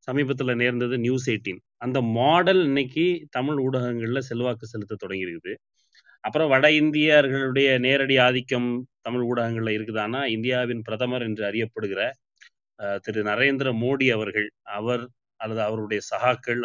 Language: Tamil